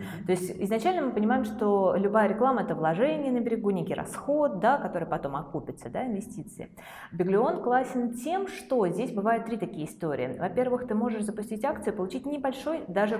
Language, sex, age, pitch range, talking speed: Russian, female, 20-39, 155-230 Hz, 175 wpm